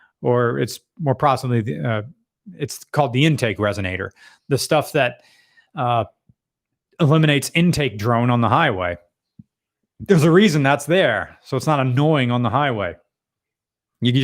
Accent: American